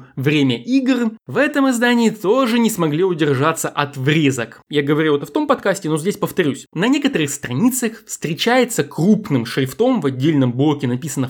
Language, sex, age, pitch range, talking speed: Russian, male, 20-39, 140-220 Hz, 160 wpm